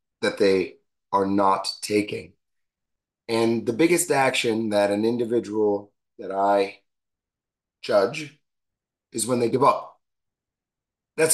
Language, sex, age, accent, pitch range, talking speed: English, male, 30-49, American, 105-150 Hz, 110 wpm